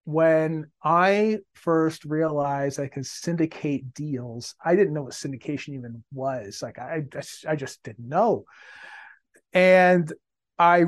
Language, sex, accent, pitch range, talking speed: English, male, American, 140-165 Hz, 140 wpm